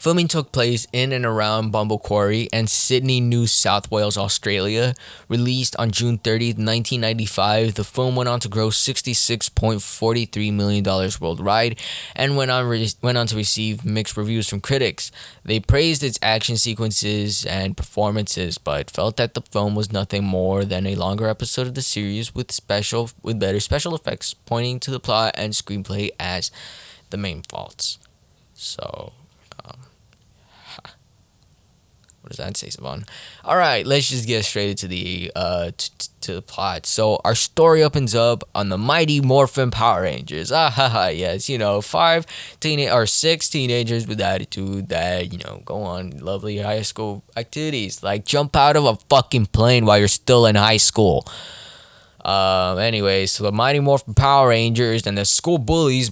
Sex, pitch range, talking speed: male, 100-125 Hz, 165 wpm